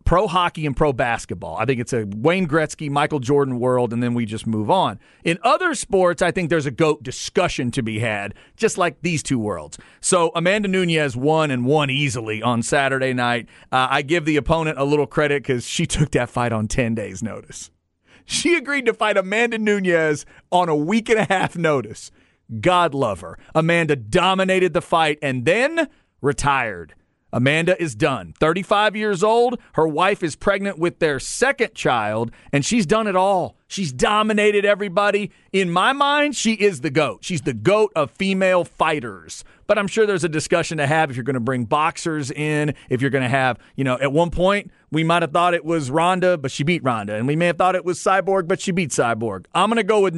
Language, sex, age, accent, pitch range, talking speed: English, male, 40-59, American, 135-185 Hz, 210 wpm